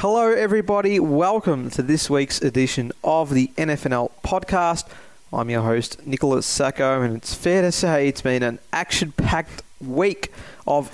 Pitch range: 125-145 Hz